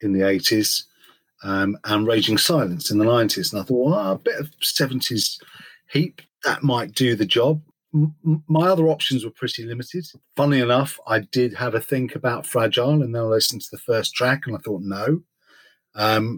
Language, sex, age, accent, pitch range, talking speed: English, male, 40-59, British, 110-150 Hz, 195 wpm